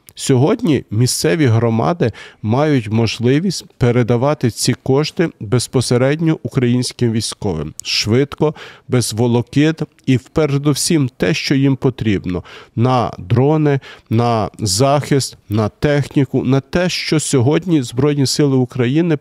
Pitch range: 115-140 Hz